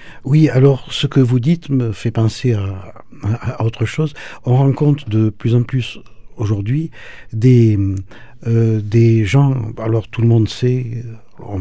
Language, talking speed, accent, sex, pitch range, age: French, 160 wpm, French, male, 110-130 Hz, 50-69